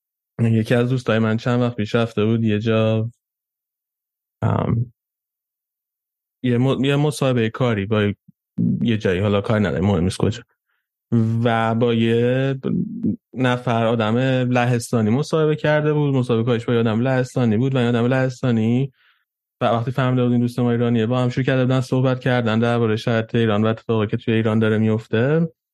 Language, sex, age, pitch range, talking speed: Persian, male, 20-39, 110-130 Hz, 170 wpm